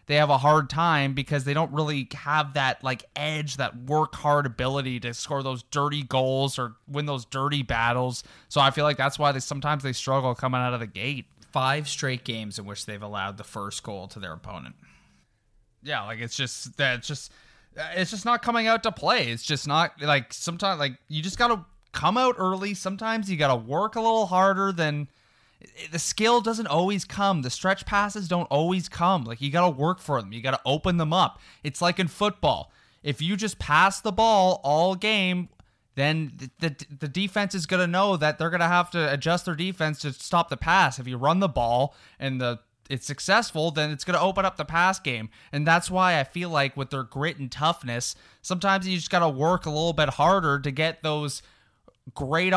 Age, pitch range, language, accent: 20-39, 130-180 Hz, English, American